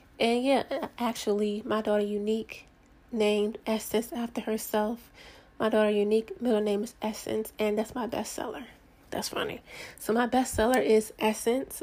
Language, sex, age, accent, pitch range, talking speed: English, female, 30-49, American, 210-225 Hz, 140 wpm